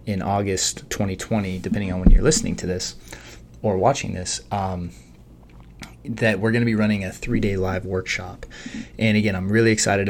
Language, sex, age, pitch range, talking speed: English, male, 20-39, 90-105 Hz, 170 wpm